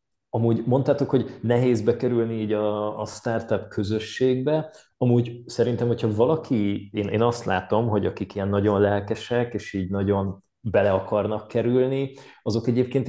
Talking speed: 140 wpm